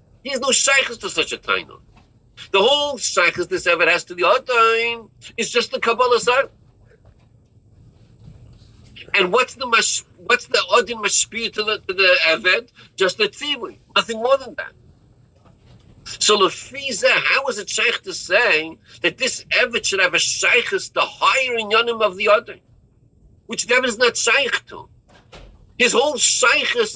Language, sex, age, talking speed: English, male, 50-69, 155 wpm